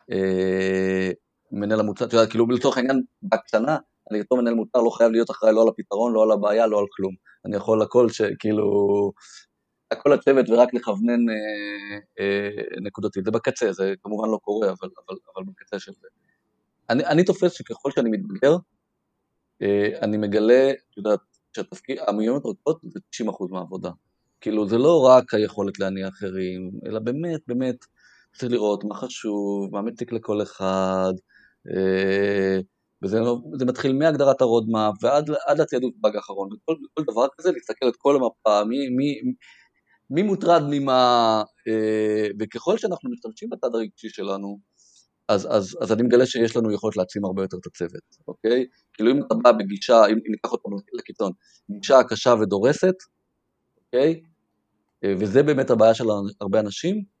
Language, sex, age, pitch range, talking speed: Hebrew, male, 30-49, 100-125 Hz, 150 wpm